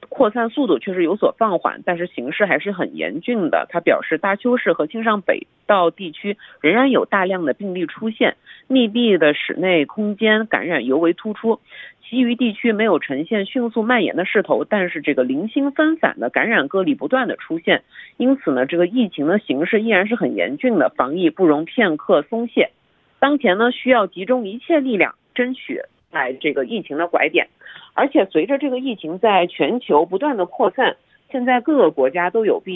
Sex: female